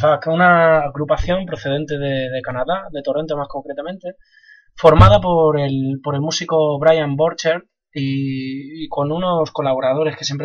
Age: 20-39